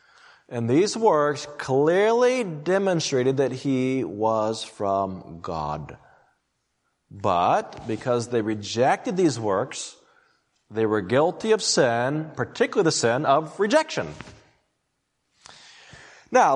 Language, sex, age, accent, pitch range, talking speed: English, male, 40-59, American, 115-175 Hz, 100 wpm